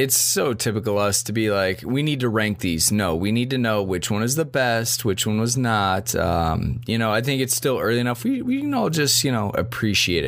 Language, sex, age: English, male, 20-39